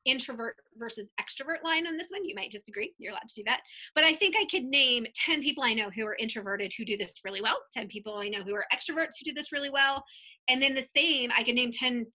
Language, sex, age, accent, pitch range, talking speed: English, female, 20-39, American, 210-275 Hz, 260 wpm